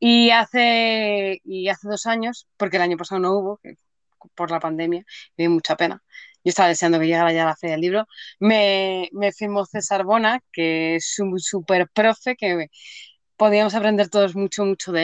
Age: 20-39